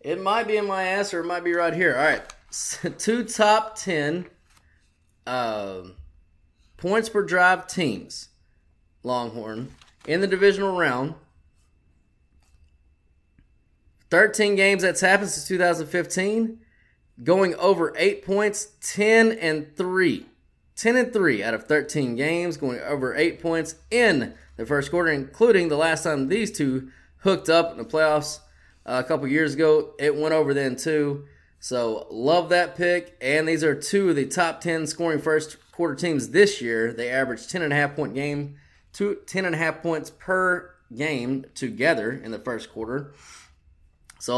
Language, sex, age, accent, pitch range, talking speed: English, male, 20-39, American, 125-180 Hz, 155 wpm